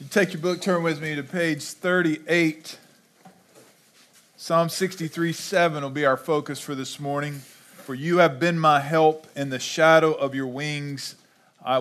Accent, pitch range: American, 130-165 Hz